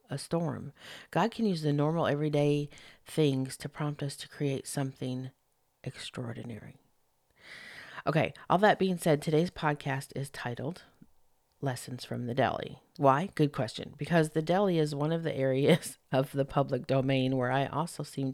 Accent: American